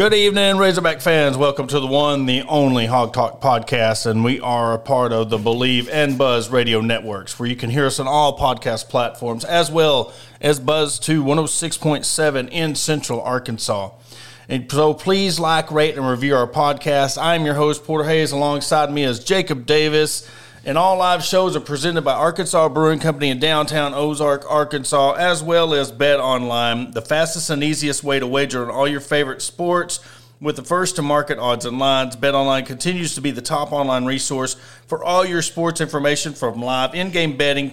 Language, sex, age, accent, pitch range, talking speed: English, male, 40-59, American, 130-160 Hz, 185 wpm